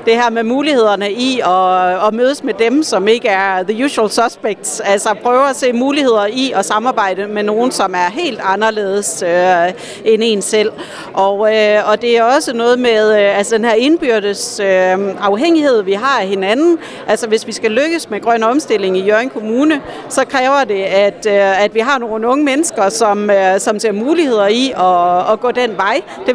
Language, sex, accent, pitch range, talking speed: Danish, female, native, 205-250 Hz, 200 wpm